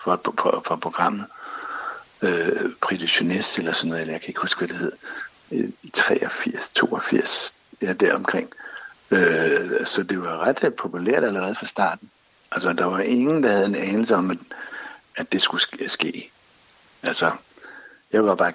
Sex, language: male, Danish